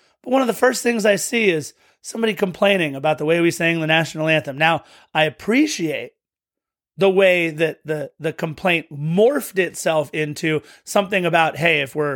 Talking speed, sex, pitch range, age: 180 wpm, male, 160-265 Hz, 30-49